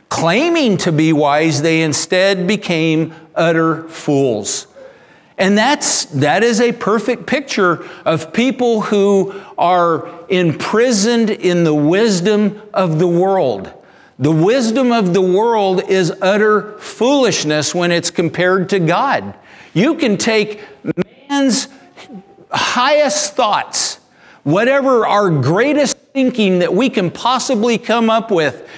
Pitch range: 170-230 Hz